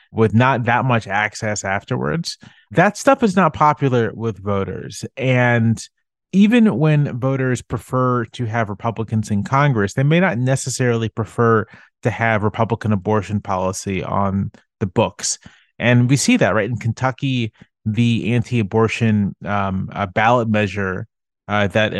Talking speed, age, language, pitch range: 140 wpm, 30-49, English, 105-130 Hz